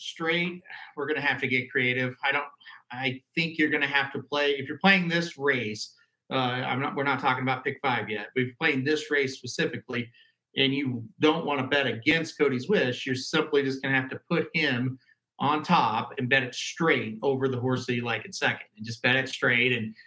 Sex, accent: male, American